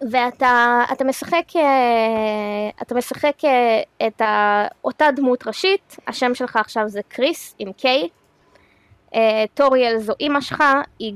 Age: 20-39